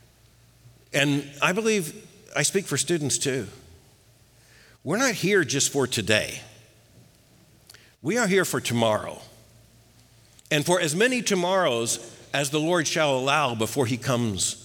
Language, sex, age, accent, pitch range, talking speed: English, male, 50-69, American, 120-190 Hz, 130 wpm